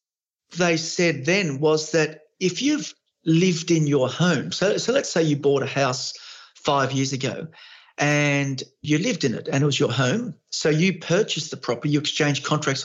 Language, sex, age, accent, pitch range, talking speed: English, male, 50-69, Australian, 135-165 Hz, 185 wpm